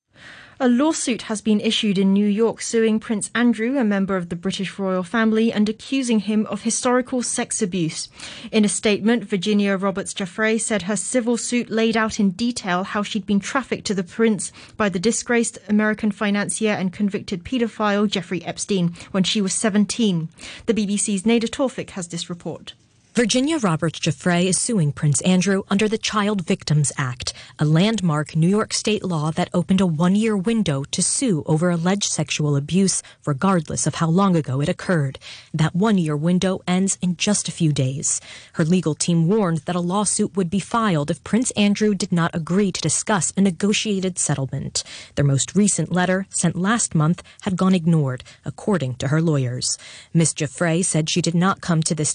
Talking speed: 180 wpm